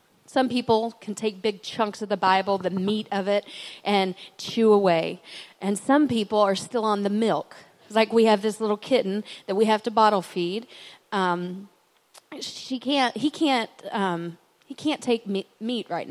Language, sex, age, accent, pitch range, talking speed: English, female, 30-49, American, 195-240 Hz, 180 wpm